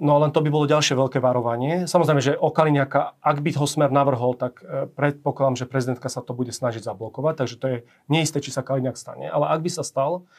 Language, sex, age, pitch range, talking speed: Slovak, male, 40-59, 125-145 Hz, 225 wpm